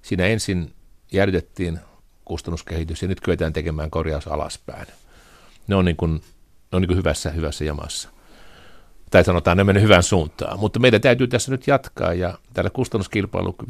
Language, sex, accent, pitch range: Finnish, male, native, 85-100 Hz